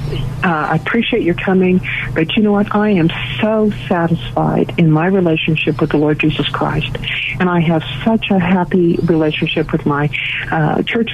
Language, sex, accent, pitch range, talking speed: English, female, American, 145-190 Hz, 170 wpm